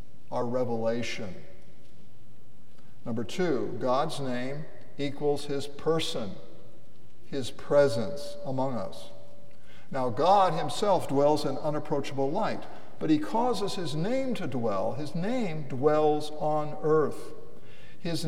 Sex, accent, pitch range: male, American, 135-180 Hz